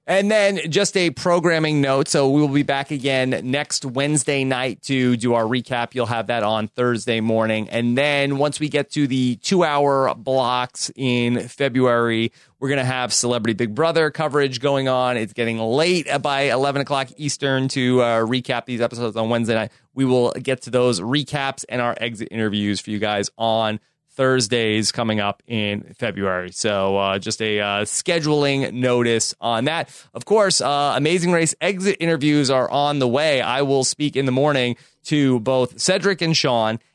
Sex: male